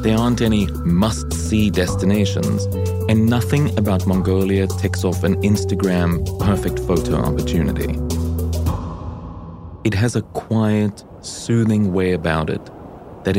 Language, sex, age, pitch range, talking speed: English, male, 30-49, 85-105 Hz, 110 wpm